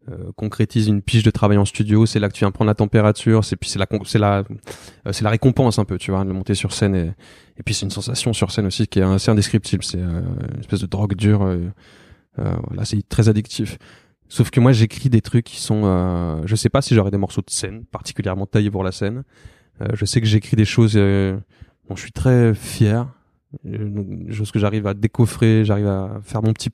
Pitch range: 100-115 Hz